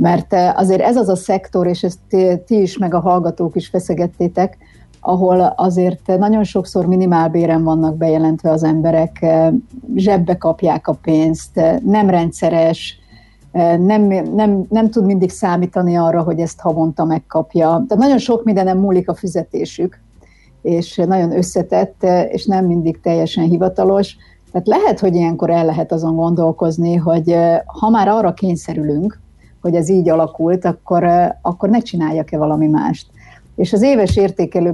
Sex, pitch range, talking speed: female, 165-190 Hz, 145 wpm